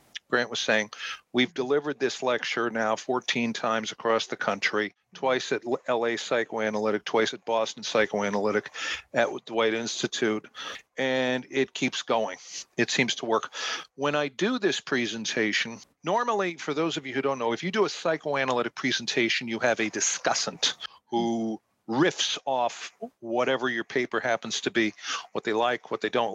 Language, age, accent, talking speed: English, 50-69, American, 160 wpm